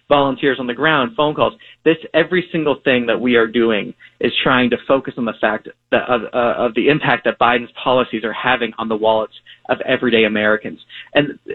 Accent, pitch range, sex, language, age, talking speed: American, 120-155 Hz, male, English, 30-49, 205 wpm